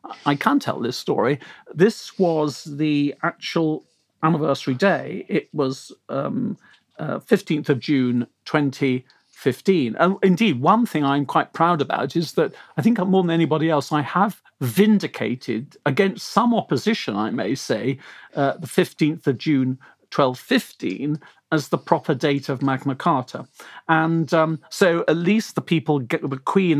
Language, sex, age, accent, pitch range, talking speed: English, male, 50-69, British, 135-170 Hz, 155 wpm